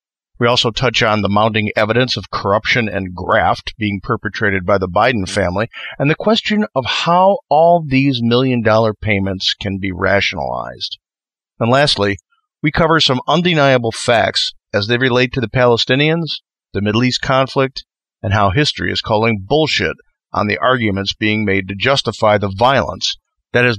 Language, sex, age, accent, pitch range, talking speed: English, male, 50-69, American, 100-135 Hz, 160 wpm